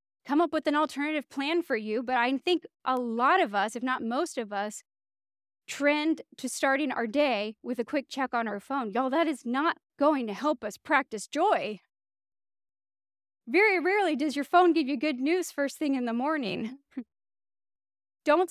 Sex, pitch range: female, 205-320 Hz